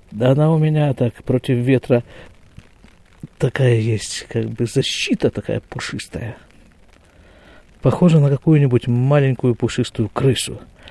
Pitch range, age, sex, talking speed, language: 105-155 Hz, 50-69, male, 110 wpm, Russian